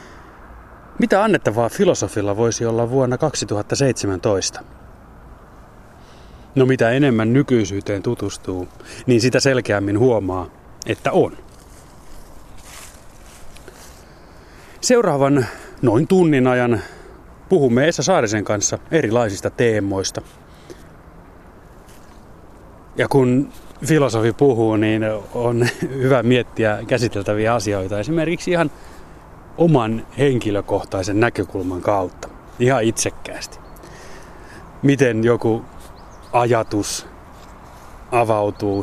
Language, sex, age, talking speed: Finnish, male, 30-49, 75 wpm